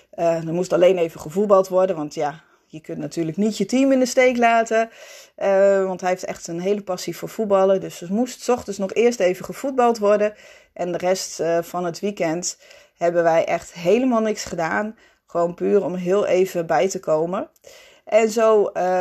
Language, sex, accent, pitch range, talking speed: Dutch, female, Dutch, 175-215 Hz, 195 wpm